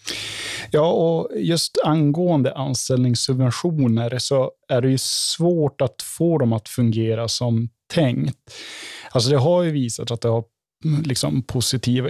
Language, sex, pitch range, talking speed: Swedish, male, 115-135 Hz, 135 wpm